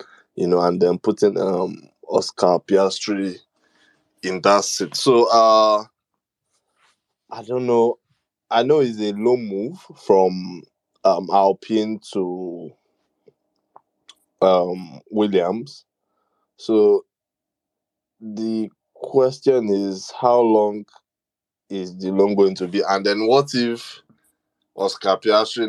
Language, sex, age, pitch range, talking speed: English, male, 20-39, 95-115 Hz, 105 wpm